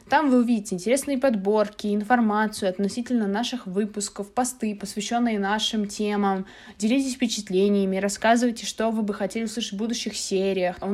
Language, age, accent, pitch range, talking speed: Russian, 20-39, native, 195-220 Hz, 135 wpm